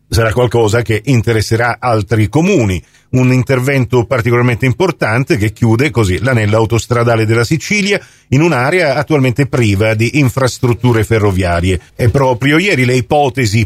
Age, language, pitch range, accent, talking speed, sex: 50-69, Italian, 110-135 Hz, native, 125 wpm, male